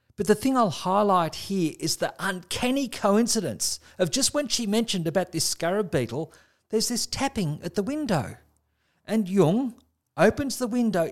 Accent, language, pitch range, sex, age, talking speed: Australian, English, 165-220 Hz, male, 50-69, 160 wpm